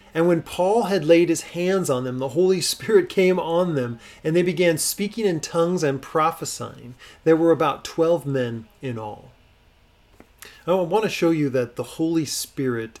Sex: male